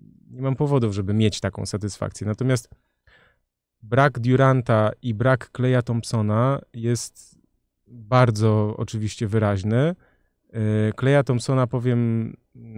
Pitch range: 110-135 Hz